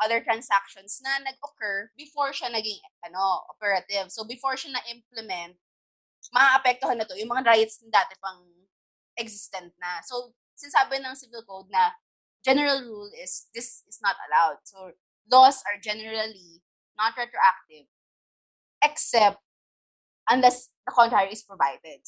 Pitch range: 195-275 Hz